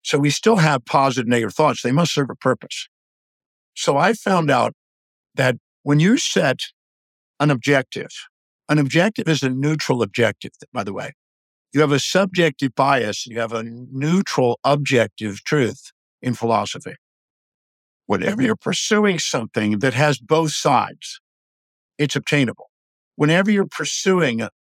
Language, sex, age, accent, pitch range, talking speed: English, male, 50-69, American, 125-165 Hz, 140 wpm